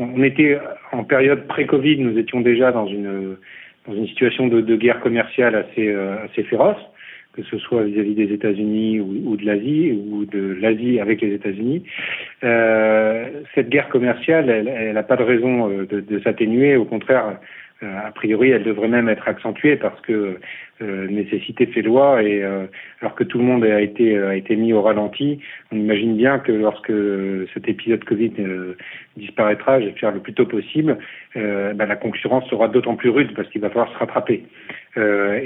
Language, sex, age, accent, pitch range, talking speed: French, male, 40-59, French, 105-125 Hz, 190 wpm